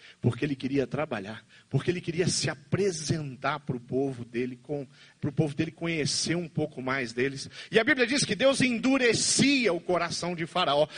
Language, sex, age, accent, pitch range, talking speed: Portuguese, male, 40-59, Brazilian, 150-245 Hz, 180 wpm